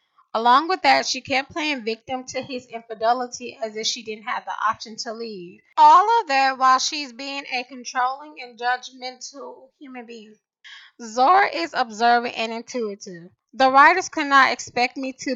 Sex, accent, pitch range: female, American, 225-270 Hz